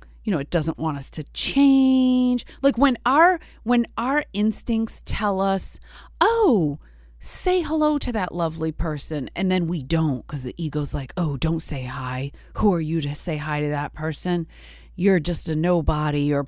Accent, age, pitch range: American, 30-49, 145-215 Hz